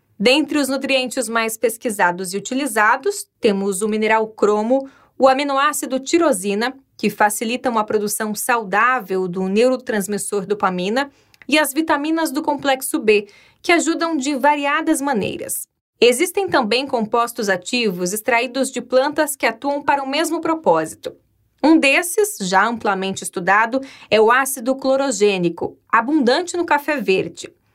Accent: Brazilian